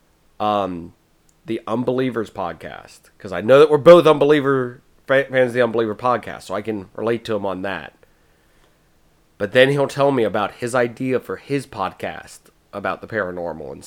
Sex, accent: male, American